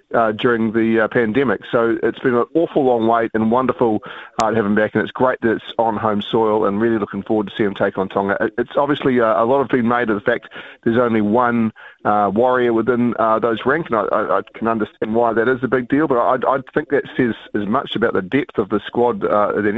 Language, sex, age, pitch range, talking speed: English, male, 30-49, 110-125 Hz, 250 wpm